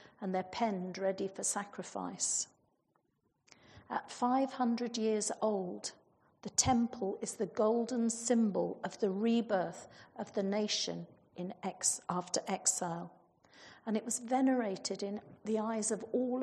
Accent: British